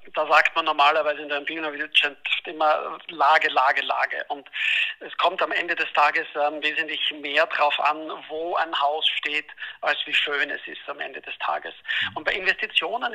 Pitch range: 145-155 Hz